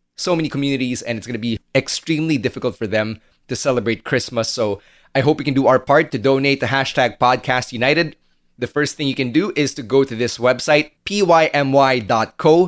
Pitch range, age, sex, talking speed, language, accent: 115-140 Hz, 30-49, male, 200 wpm, English, Filipino